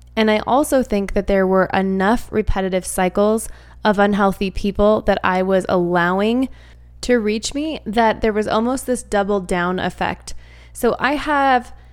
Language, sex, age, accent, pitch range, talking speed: English, female, 20-39, American, 180-220 Hz, 155 wpm